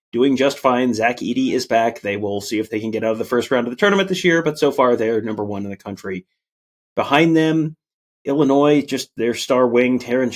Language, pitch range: English, 115-140 Hz